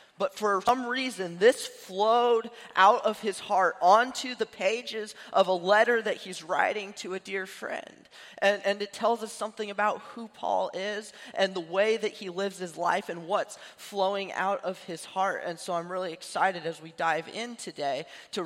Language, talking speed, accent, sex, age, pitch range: English, 190 wpm, American, male, 20-39, 170-220 Hz